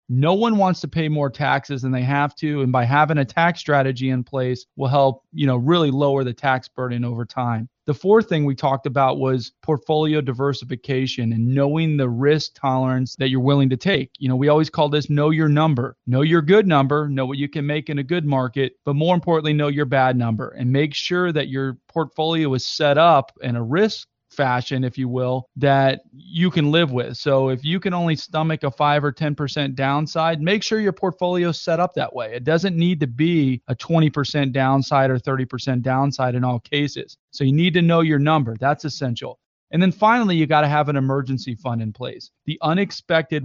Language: English